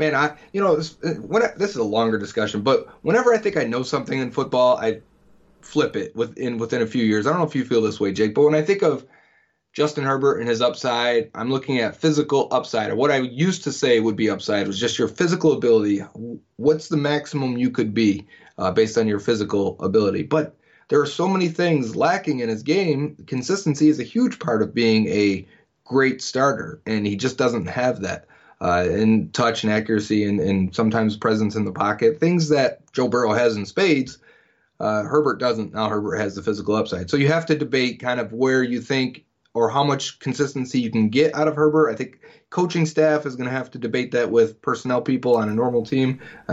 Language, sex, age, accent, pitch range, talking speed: English, male, 30-49, American, 110-150 Hz, 220 wpm